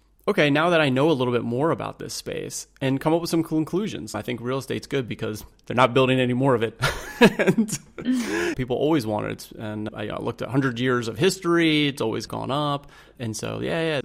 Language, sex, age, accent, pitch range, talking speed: English, male, 30-49, American, 115-150 Hz, 235 wpm